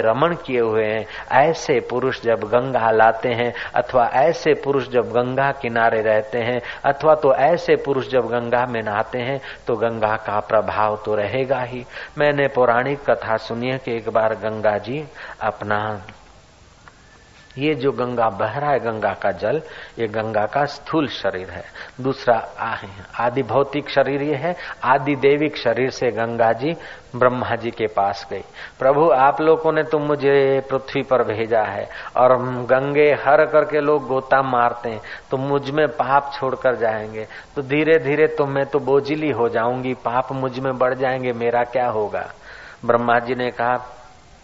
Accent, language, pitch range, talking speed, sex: native, Hindi, 115-140 Hz, 165 wpm, male